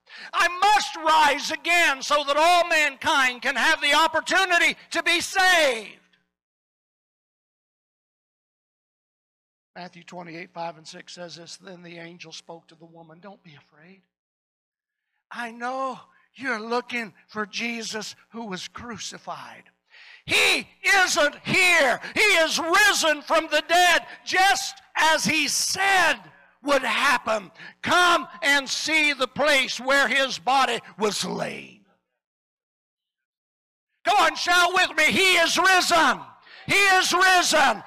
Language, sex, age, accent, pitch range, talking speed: English, male, 60-79, American, 230-345 Hz, 120 wpm